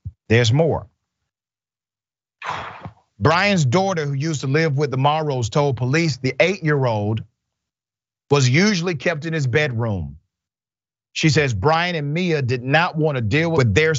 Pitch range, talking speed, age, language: 100-145 Hz, 140 wpm, 40-59, English